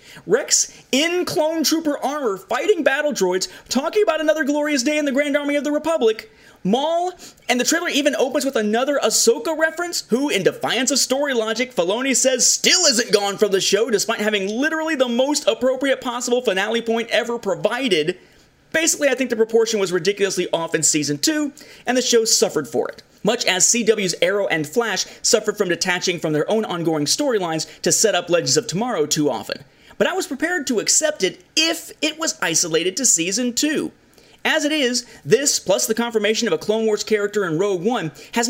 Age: 30-49